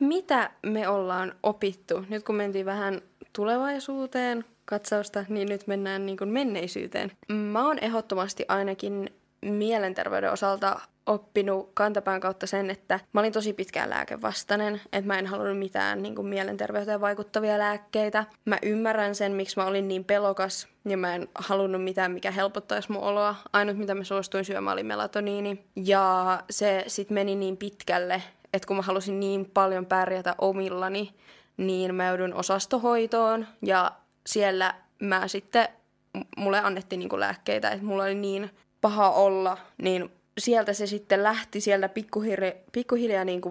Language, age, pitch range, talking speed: Finnish, 20-39, 190-210 Hz, 140 wpm